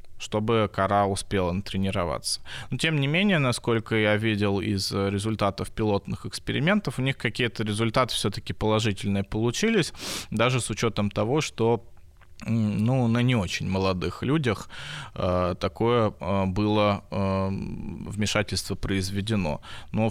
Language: Russian